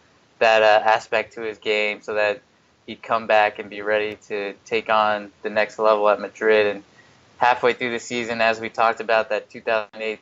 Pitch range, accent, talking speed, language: 105-115 Hz, American, 205 wpm, English